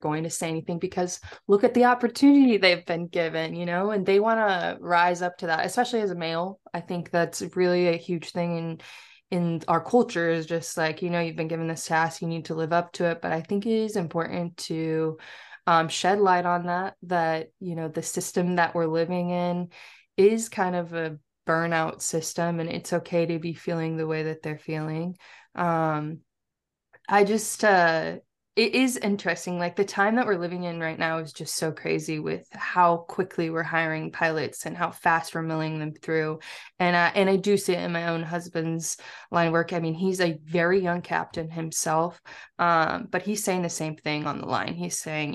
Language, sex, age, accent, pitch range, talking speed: English, female, 20-39, American, 165-180 Hz, 210 wpm